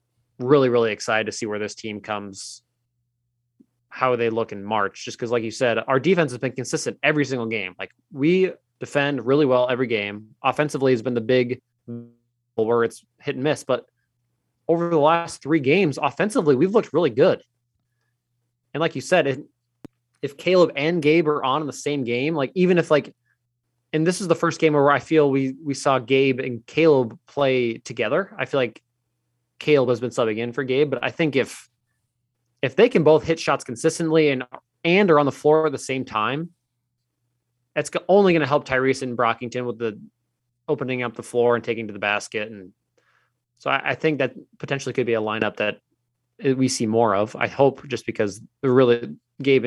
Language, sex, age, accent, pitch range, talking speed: English, male, 20-39, American, 120-140 Hz, 195 wpm